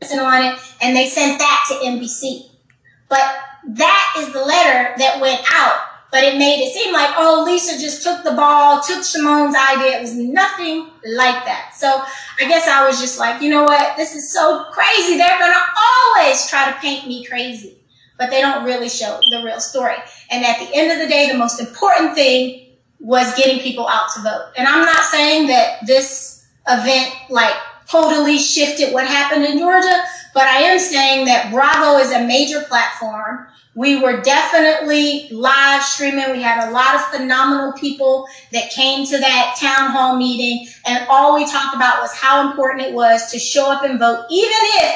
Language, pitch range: English, 250-295 Hz